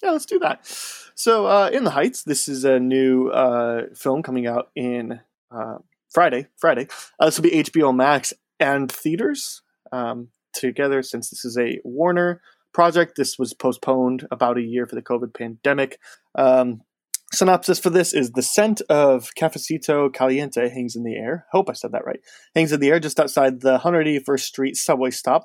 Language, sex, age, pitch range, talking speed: English, male, 20-39, 125-160 Hz, 180 wpm